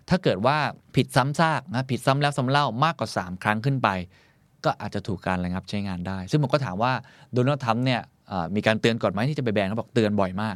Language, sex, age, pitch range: Thai, male, 20-39, 100-135 Hz